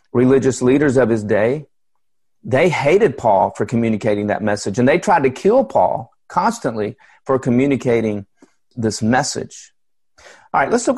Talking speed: 150 wpm